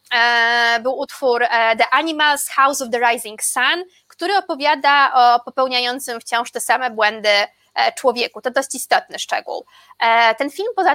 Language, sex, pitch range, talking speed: Polish, female, 230-275 Hz, 145 wpm